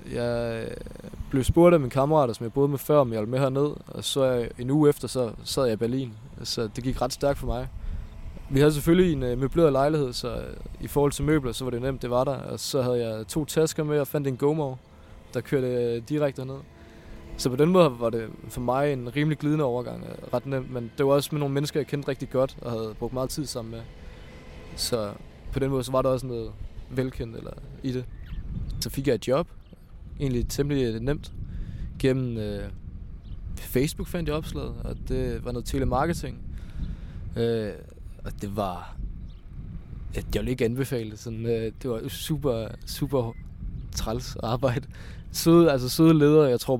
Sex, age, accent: male, 20-39, native